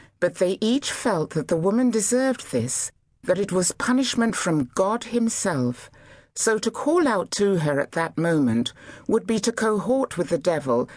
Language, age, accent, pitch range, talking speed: English, 60-79, British, 150-230 Hz, 175 wpm